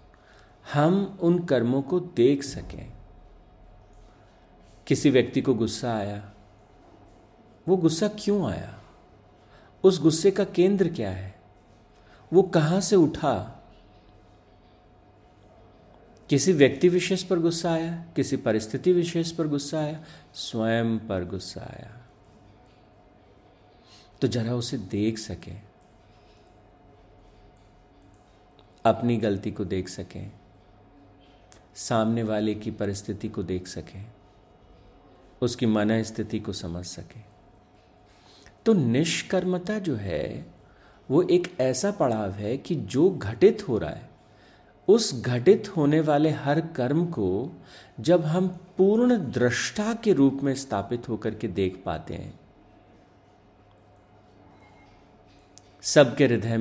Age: 50-69